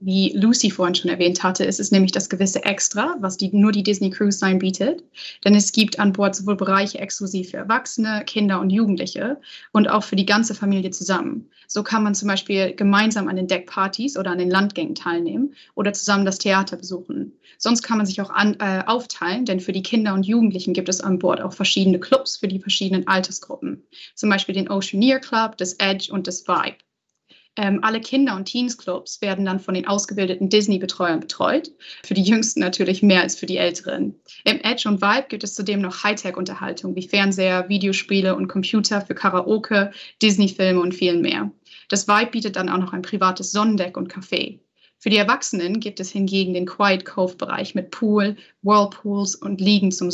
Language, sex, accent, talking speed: German, female, German, 190 wpm